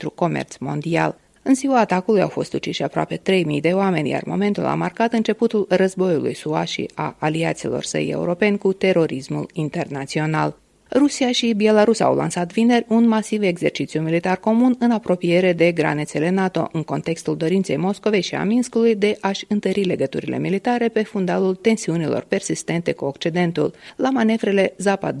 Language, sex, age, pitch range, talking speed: Romanian, female, 30-49, 165-225 Hz, 150 wpm